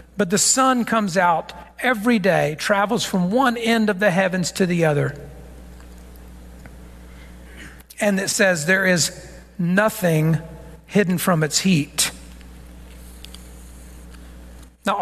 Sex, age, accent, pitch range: male, 50-69, American, 145-210 Hz